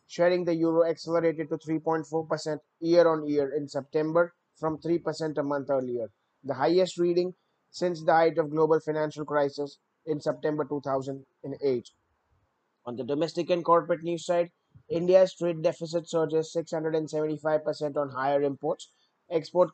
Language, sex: English, male